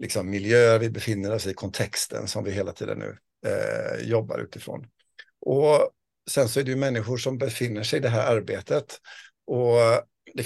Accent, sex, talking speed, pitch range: native, male, 180 wpm, 105-150 Hz